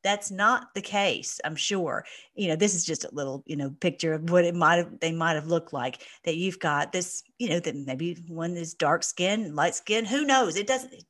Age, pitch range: 40-59, 170-215 Hz